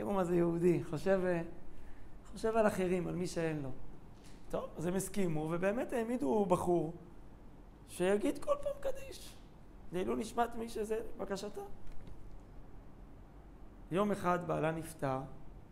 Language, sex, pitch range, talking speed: Hebrew, male, 150-205 Hz, 120 wpm